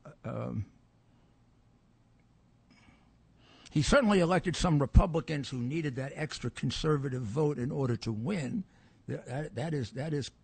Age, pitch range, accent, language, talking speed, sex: 60-79, 125-165 Hz, American, English, 110 wpm, male